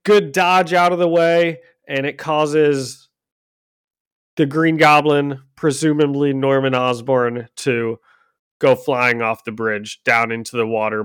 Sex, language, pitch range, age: male, English, 120-150 Hz, 30-49